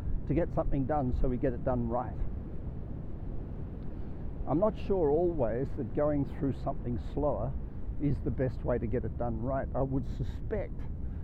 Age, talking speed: 50-69, 165 wpm